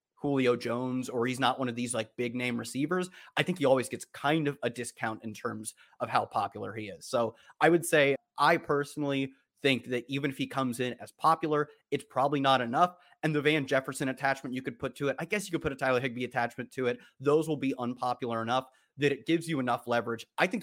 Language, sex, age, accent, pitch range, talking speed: English, male, 30-49, American, 115-145 Hz, 235 wpm